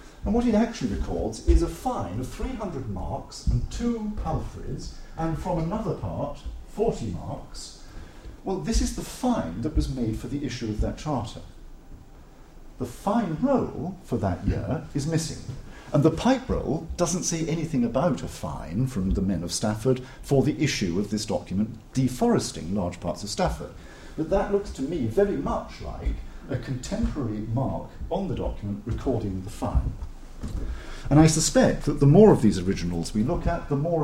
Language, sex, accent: English, male, British